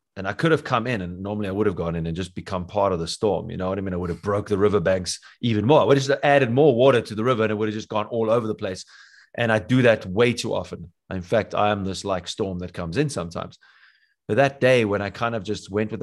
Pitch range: 95-120 Hz